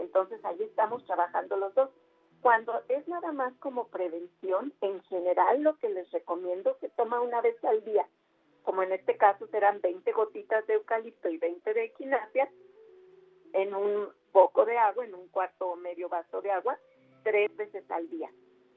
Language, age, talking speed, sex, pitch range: Spanish, 50-69, 175 wpm, female, 185-280 Hz